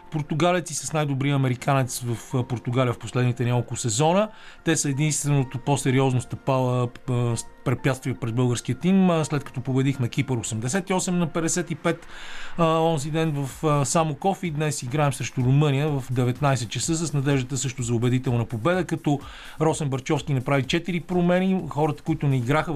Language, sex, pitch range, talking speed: Bulgarian, male, 130-165 Hz, 145 wpm